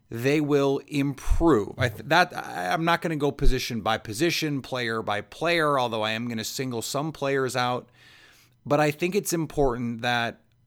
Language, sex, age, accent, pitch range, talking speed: English, male, 30-49, American, 110-145 Hz, 185 wpm